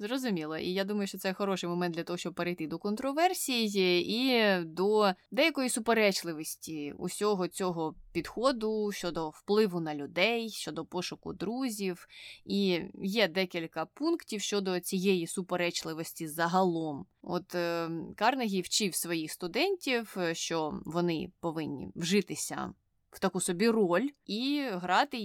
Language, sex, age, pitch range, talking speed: Ukrainian, female, 20-39, 170-210 Hz, 120 wpm